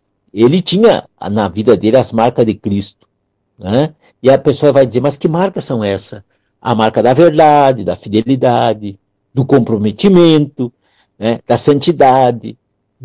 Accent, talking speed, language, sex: Brazilian, 145 wpm, Portuguese, male